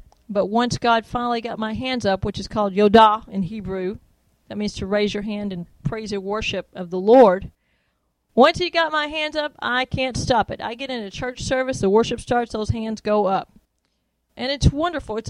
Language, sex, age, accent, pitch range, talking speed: English, female, 40-59, American, 200-255 Hz, 210 wpm